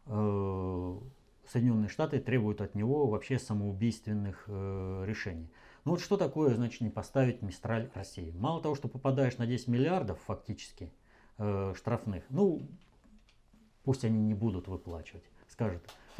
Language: Russian